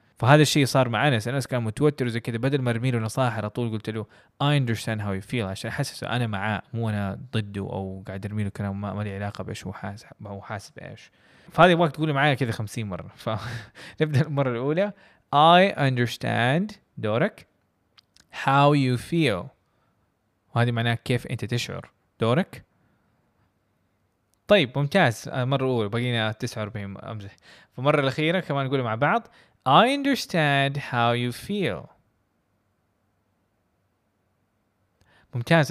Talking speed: 145 wpm